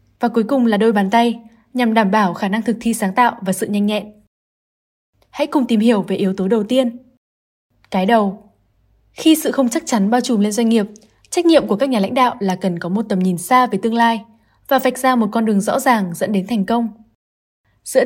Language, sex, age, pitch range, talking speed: Vietnamese, female, 10-29, 205-250 Hz, 235 wpm